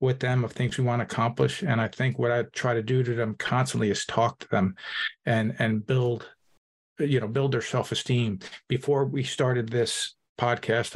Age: 40-59